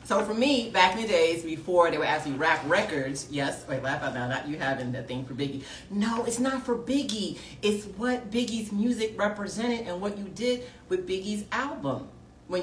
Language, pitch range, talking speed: English, 140-210 Hz, 205 wpm